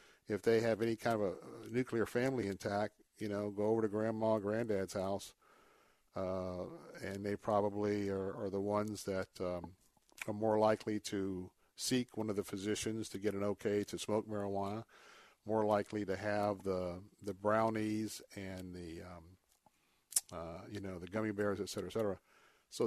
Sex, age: male, 50-69